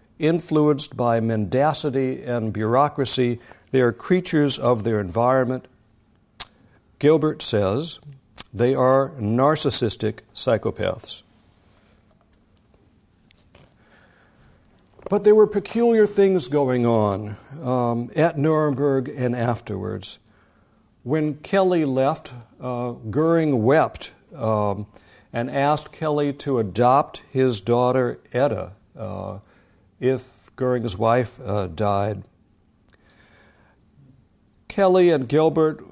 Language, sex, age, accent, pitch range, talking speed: English, male, 60-79, American, 110-150 Hz, 90 wpm